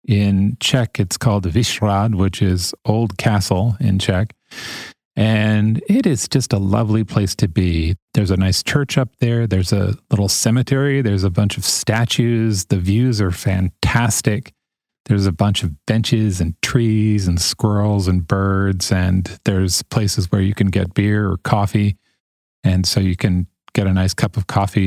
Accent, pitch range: American, 95-115 Hz